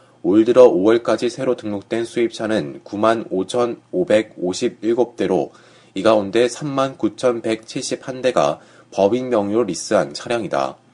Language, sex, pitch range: Korean, male, 110-130 Hz